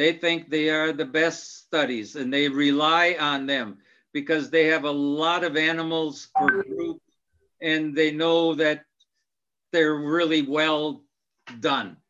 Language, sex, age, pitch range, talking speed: English, male, 60-79, 140-165 Hz, 145 wpm